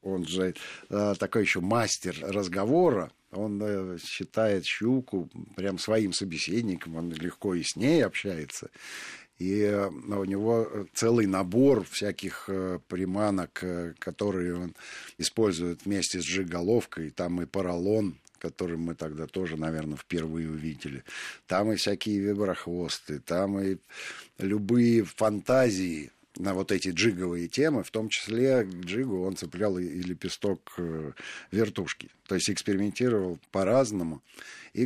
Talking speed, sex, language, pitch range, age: 115 wpm, male, Russian, 85-105 Hz, 50-69